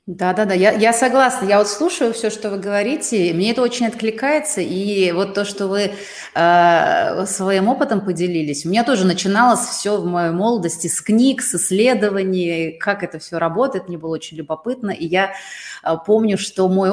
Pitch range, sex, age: 170-210 Hz, female, 30-49